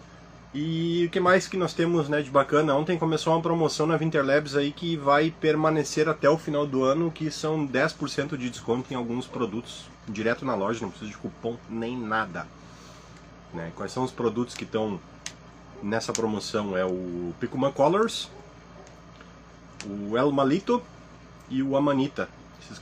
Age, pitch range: 30-49, 115-150 Hz